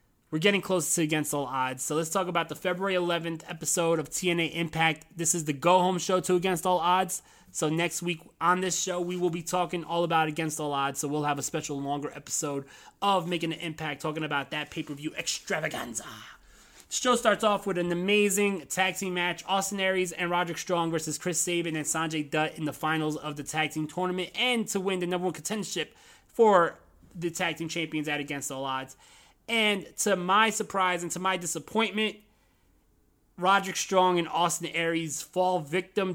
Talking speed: 195 wpm